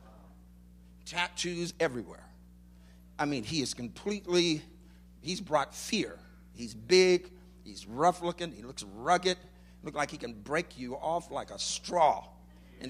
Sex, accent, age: male, American, 50-69